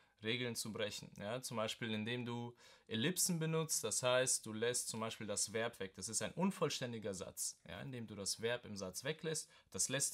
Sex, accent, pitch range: male, German, 115-150 Hz